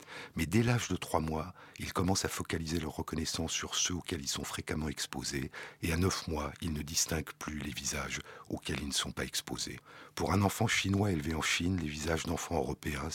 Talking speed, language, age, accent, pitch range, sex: 210 wpm, French, 60-79, French, 75-90 Hz, male